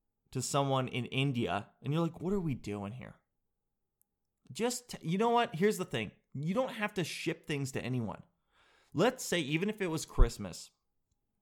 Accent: American